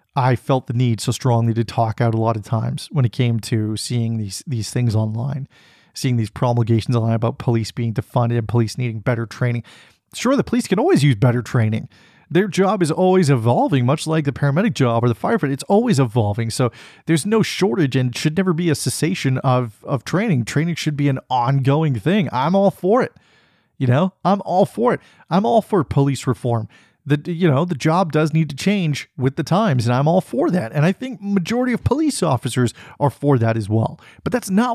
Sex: male